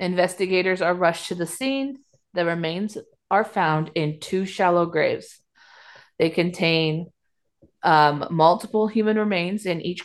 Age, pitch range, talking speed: 30-49, 160-200 Hz, 130 wpm